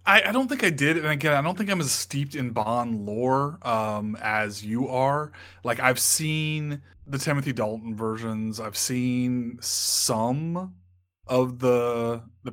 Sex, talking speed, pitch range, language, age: male, 165 wpm, 115-135 Hz, English, 20-39